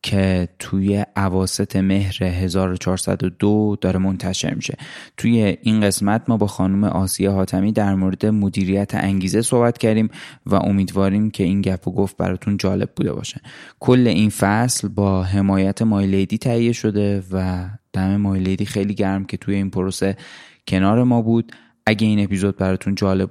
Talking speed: 150 wpm